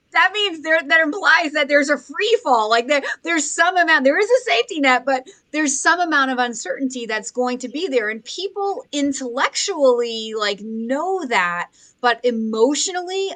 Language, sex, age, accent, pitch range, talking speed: English, female, 30-49, American, 220-295 Hz, 170 wpm